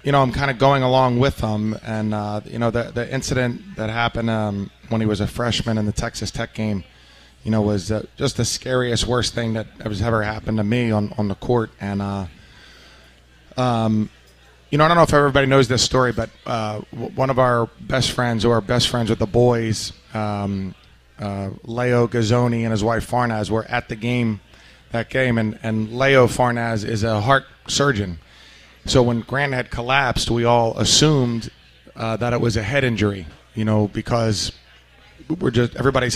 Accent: American